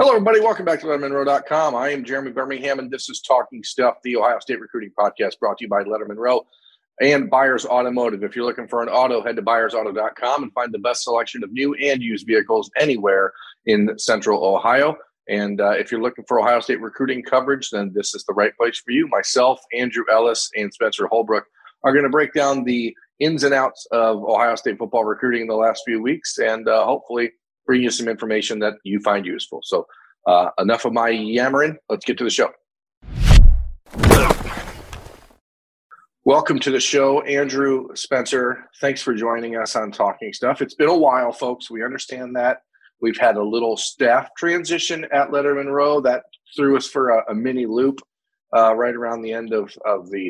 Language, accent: English, American